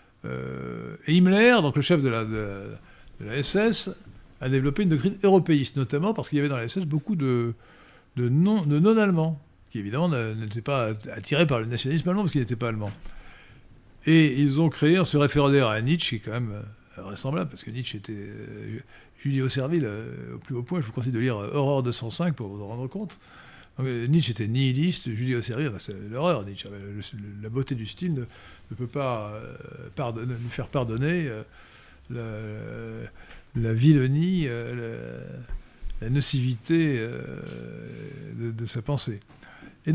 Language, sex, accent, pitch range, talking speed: French, male, French, 115-155 Hz, 180 wpm